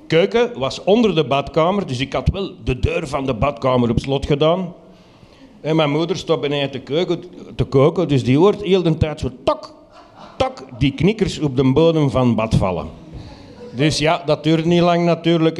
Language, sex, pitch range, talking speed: Dutch, male, 140-175 Hz, 195 wpm